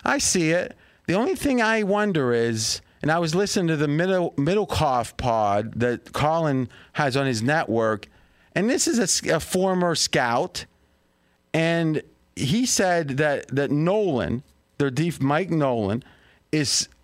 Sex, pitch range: male, 125-180 Hz